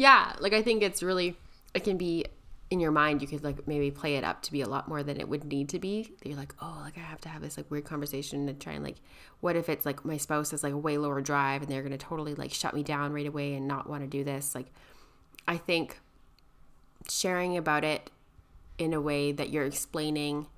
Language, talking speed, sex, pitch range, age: English, 260 wpm, female, 140-165 Hz, 20-39